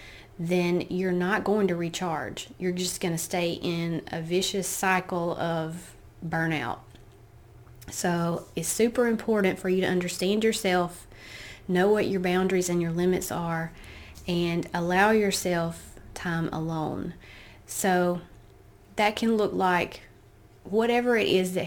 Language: English